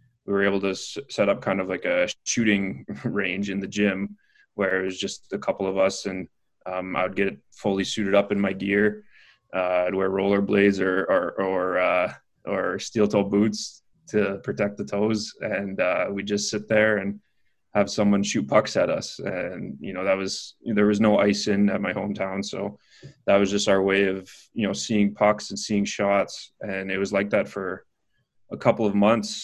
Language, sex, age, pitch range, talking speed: English, male, 20-39, 95-105 Hz, 200 wpm